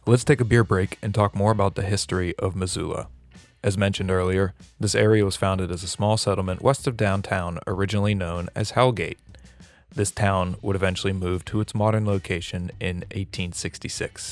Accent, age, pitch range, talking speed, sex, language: American, 30-49, 95-110 Hz, 175 wpm, male, English